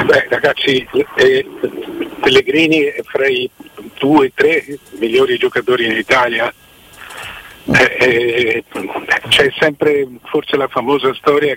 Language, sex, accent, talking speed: Italian, male, native, 115 wpm